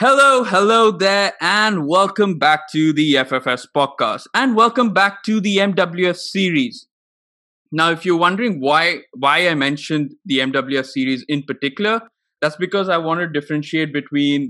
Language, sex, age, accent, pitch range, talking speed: English, male, 20-39, Indian, 135-175 Hz, 155 wpm